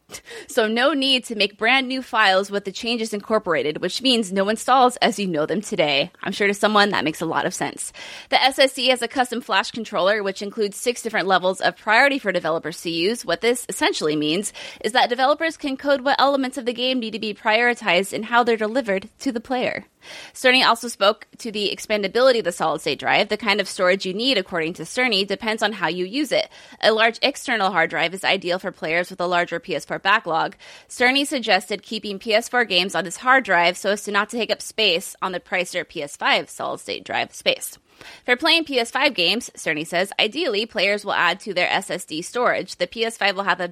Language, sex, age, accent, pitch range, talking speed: English, female, 20-39, American, 185-250 Hz, 215 wpm